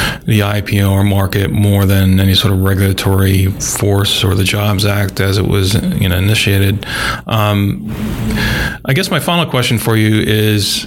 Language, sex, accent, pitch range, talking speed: English, male, American, 100-115 Hz, 165 wpm